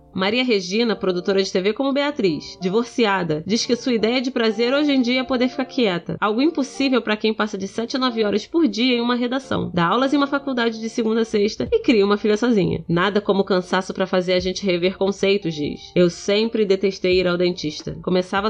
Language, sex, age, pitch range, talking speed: Portuguese, female, 20-39, 200-255 Hz, 215 wpm